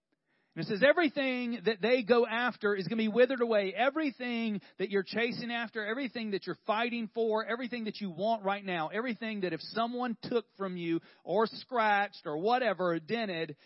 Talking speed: 185 wpm